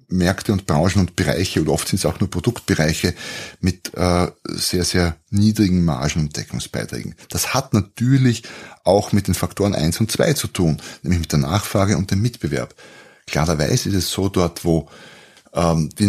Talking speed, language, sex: 170 wpm, German, male